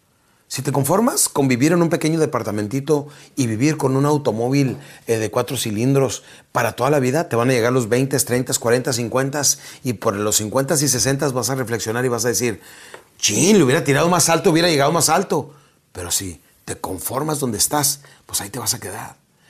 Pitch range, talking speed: 120-150 Hz, 205 wpm